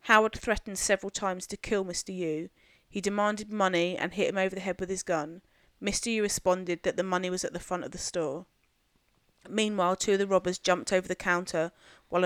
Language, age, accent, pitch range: English, 30-49, British, 175-195 Hz